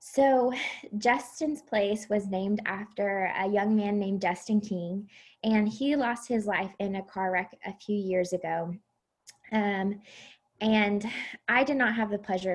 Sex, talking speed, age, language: female, 160 wpm, 20-39, English